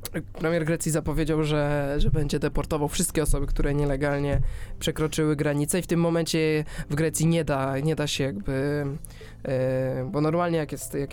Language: Polish